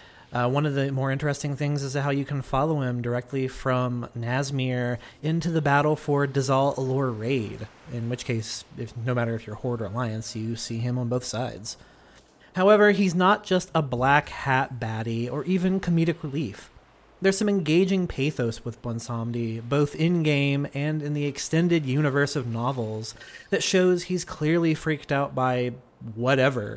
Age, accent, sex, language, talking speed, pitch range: 30-49, American, male, English, 165 wpm, 120-150 Hz